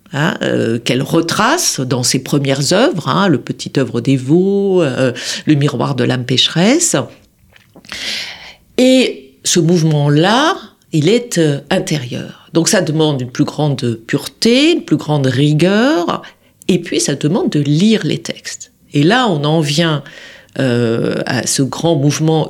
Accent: French